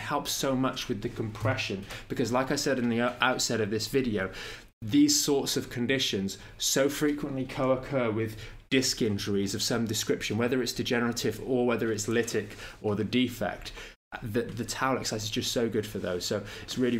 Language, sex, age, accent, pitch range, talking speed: English, male, 20-39, British, 110-130 Hz, 185 wpm